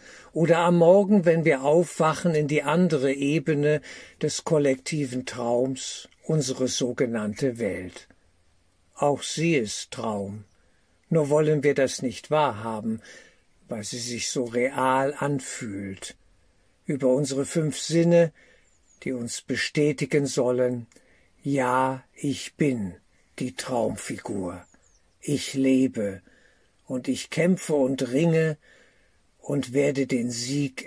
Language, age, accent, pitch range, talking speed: German, 60-79, German, 120-150 Hz, 110 wpm